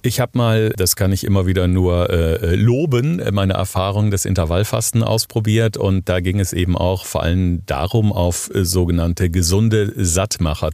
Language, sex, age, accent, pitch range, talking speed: German, male, 50-69, German, 95-120 Hz, 160 wpm